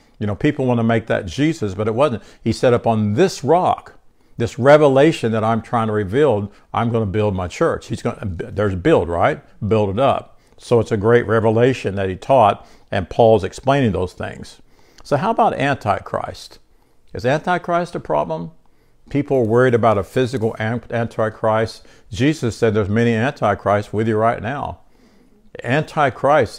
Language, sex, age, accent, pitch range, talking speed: English, male, 60-79, American, 105-120 Hz, 170 wpm